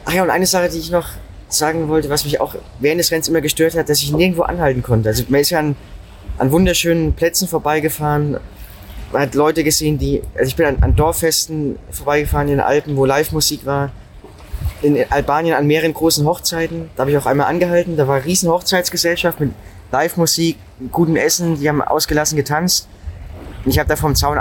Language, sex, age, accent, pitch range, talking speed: German, male, 20-39, German, 135-165 Hz, 205 wpm